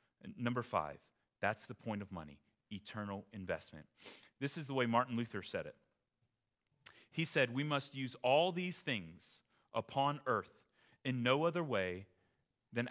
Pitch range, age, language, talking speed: 115-185 Hz, 30-49, English, 150 wpm